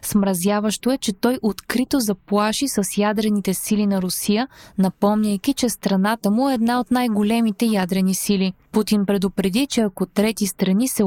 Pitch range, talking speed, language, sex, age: 200-245 Hz, 150 wpm, Bulgarian, female, 20-39